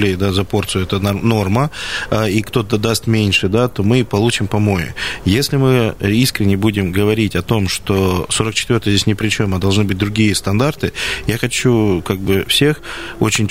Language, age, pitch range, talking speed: Russian, 20-39, 95-120 Hz, 165 wpm